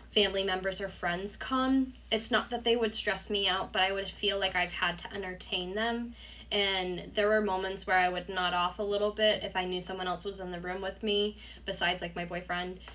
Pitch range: 185-225 Hz